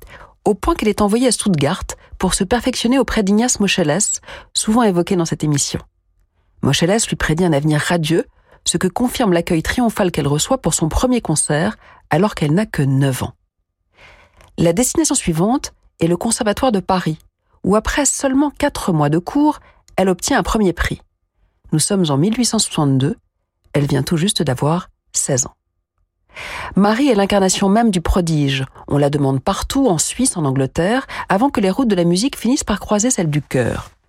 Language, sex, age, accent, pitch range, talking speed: French, female, 40-59, French, 145-230 Hz, 175 wpm